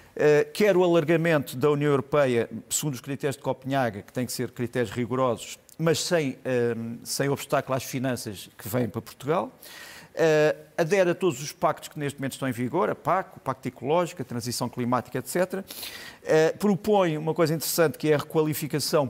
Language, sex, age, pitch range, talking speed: Portuguese, male, 50-69, 130-160 Hz, 185 wpm